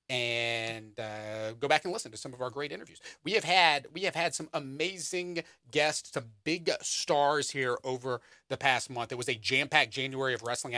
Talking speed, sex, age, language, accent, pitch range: 205 wpm, male, 30-49, English, American, 120-180 Hz